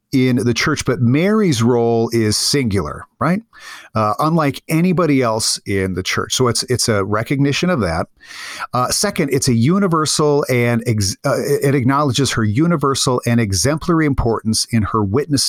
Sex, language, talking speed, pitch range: male, English, 160 wpm, 110-145 Hz